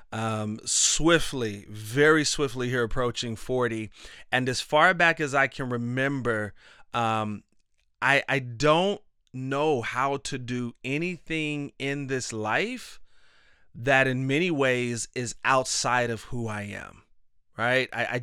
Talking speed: 130 wpm